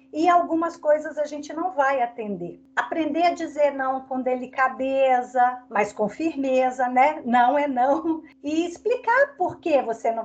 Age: 50-69